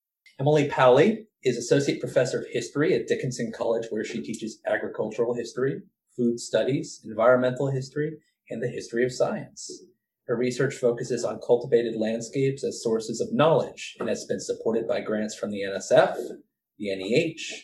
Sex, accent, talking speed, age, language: male, American, 155 wpm, 30-49, English